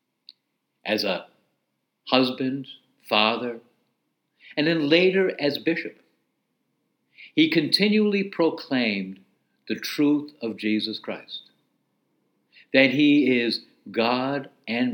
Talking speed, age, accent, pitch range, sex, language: 90 wpm, 60-79, American, 120-165 Hz, male, English